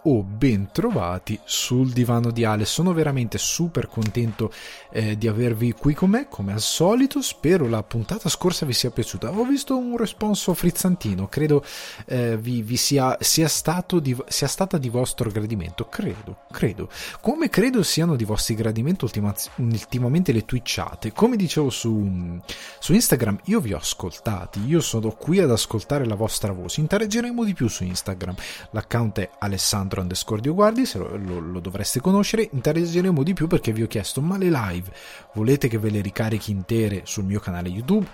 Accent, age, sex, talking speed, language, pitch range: native, 30-49, male, 175 wpm, Italian, 105-145 Hz